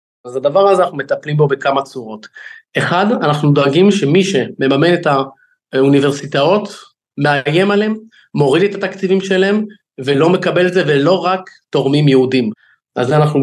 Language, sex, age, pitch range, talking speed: Hebrew, male, 30-49, 135-165 Hz, 140 wpm